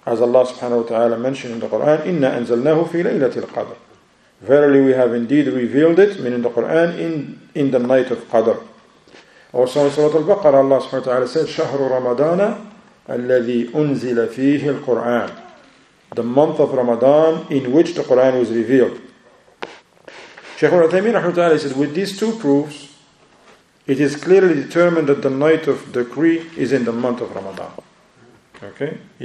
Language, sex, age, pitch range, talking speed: English, male, 50-69, 120-155 Hz, 165 wpm